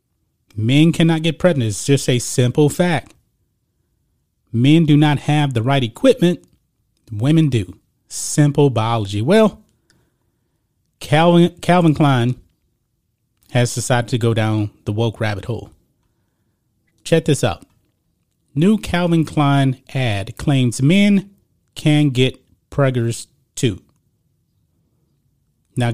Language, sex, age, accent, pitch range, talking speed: English, male, 30-49, American, 115-150 Hz, 110 wpm